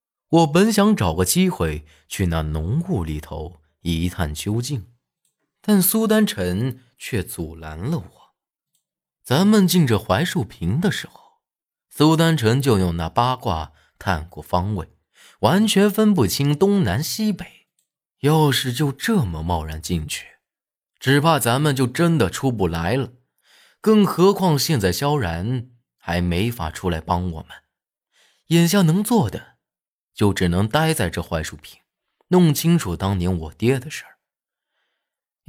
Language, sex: Chinese, male